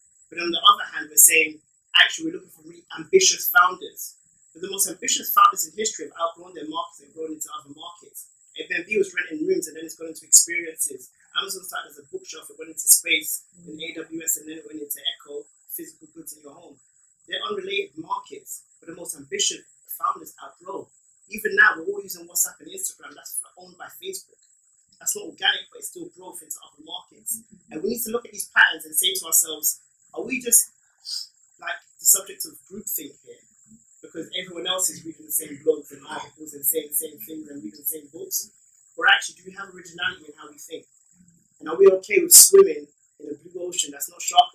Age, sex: 20-39, male